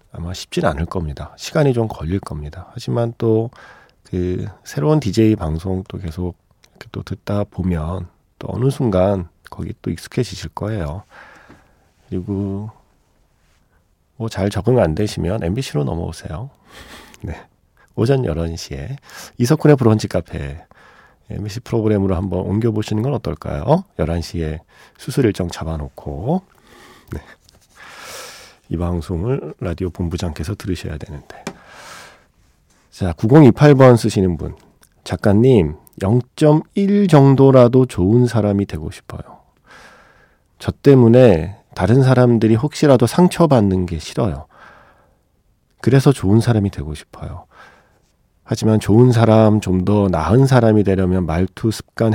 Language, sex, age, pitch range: Korean, male, 40-59, 90-120 Hz